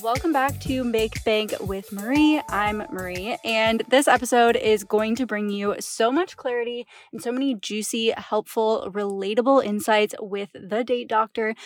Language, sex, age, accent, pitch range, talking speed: English, female, 20-39, American, 205-250 Hz, 160 wpm